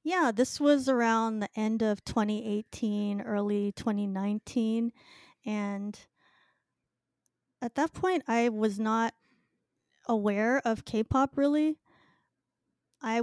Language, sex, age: English, female, 30-49